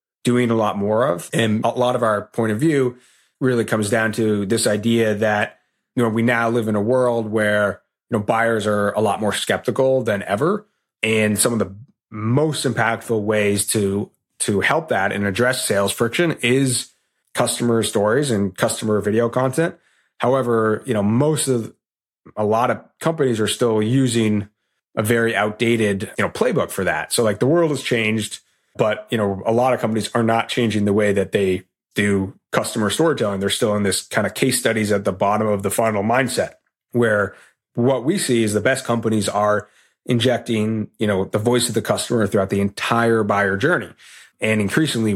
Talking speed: 190 wpm